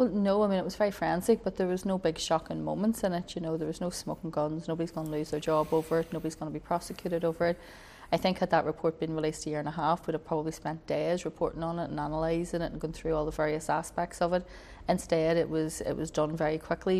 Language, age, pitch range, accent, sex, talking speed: English, 30-49, 160-180 Hz, Irish, female, 265 wpm